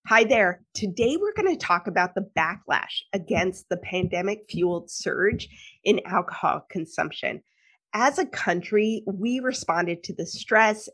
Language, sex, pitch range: English, female, 180-225 Hz